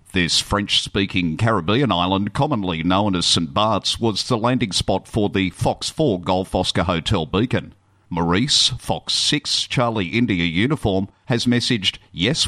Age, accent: 50-69, Australian